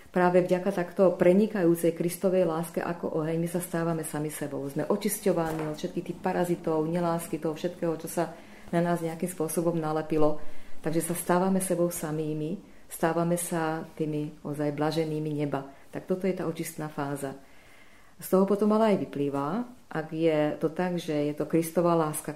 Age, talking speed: 40-59, 165 wpm